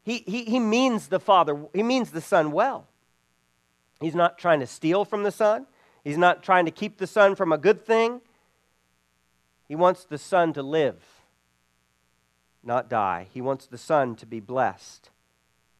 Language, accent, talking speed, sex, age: English, American, 170 wpm, male, 40-59